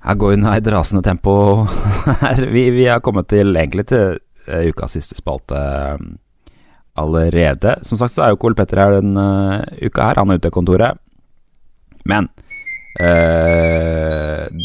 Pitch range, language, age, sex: 85-115 Hz, English, 30-49, male